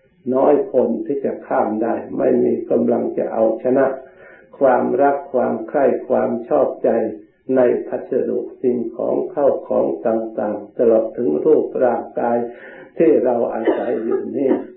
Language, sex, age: Thai, male, 60-79